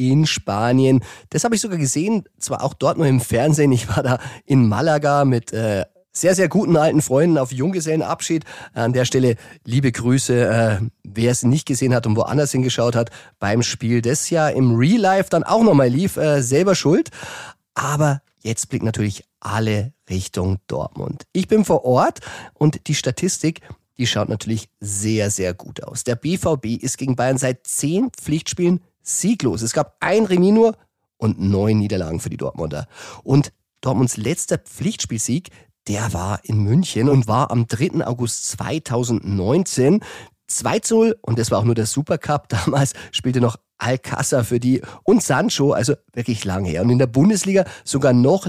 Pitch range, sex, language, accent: 115-155 Hz, male, German, German